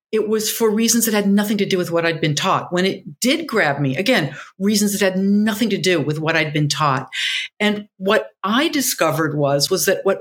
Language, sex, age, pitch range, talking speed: English, female, 50-69, 165-210 Hz, 230 wpm